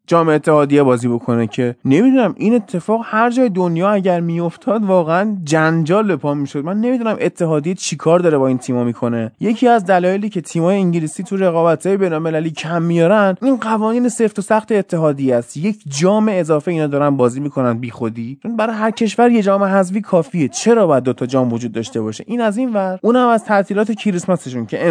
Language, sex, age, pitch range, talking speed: Persian, male, 20-39, 135-190 Hz, 190 wpm